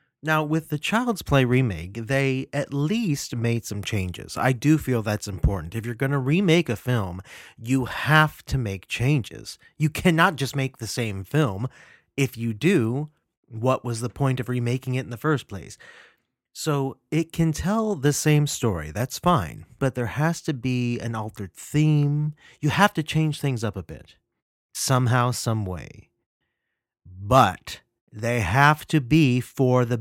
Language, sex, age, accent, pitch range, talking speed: English, male, 30-49, American, 115-150 Hz, 170 wpm